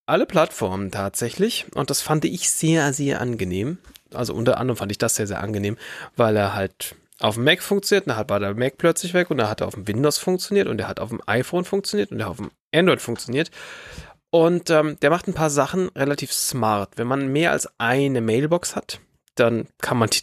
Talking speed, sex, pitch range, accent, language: 225 wpm, male, 120-170 Hz, German, German